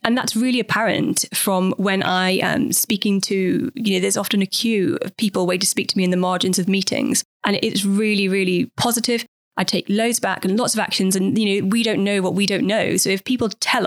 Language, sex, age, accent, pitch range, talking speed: English, female, 20-39, British, 185-225 Hz, 240 wpm